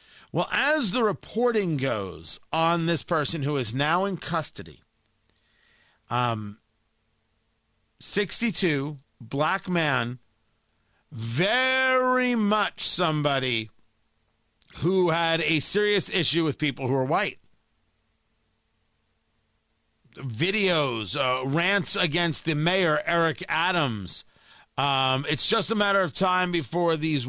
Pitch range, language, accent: 120-170 Hz, English, American